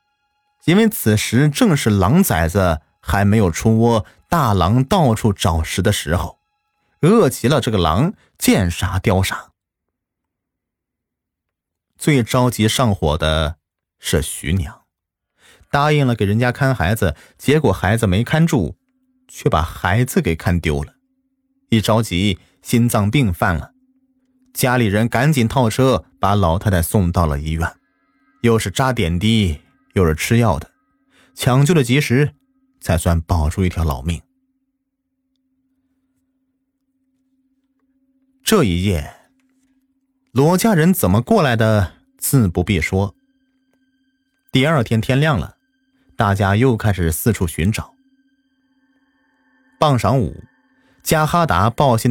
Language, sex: Chinese, male